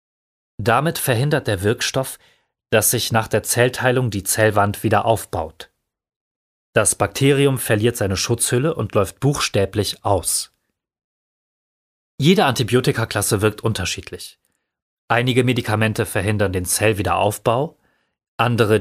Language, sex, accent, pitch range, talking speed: German, male, German, 105-125 Hz, 100 wpm